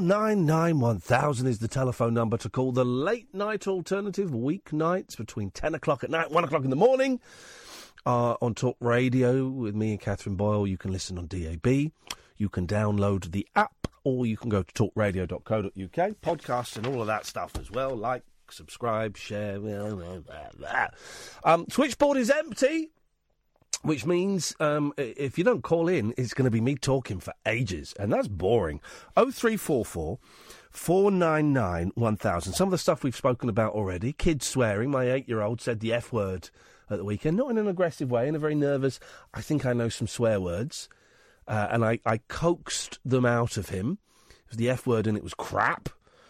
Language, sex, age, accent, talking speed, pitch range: English, male, 40-59, British, 185 wpm, 110-165 Hz